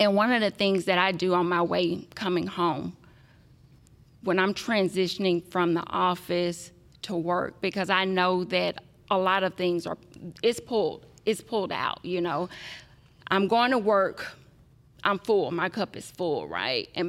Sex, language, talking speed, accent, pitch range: female, English, 170 wpm, American, 170-195 Hz